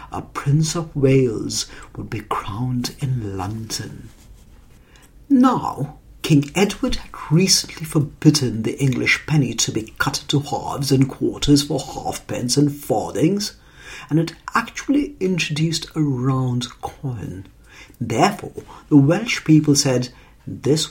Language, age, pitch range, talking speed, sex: English, 50-69, 110-155 Hz, 120 wpm, male